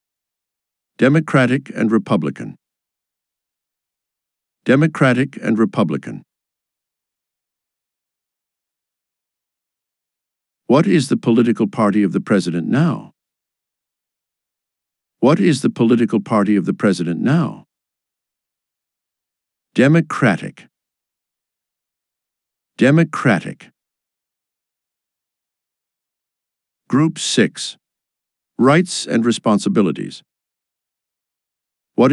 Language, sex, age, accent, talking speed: English, male, 60-79, American, 60 wpm